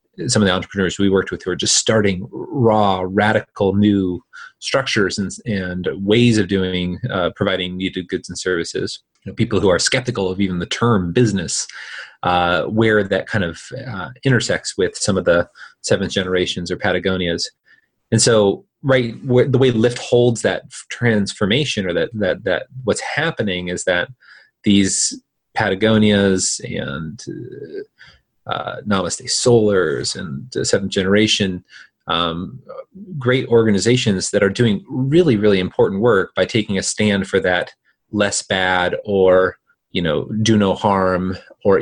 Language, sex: English, male